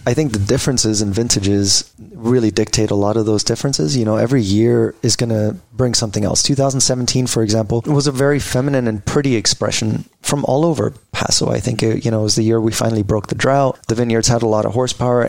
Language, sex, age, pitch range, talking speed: English, male, 30-49, 110-125 Hz, 225 wpm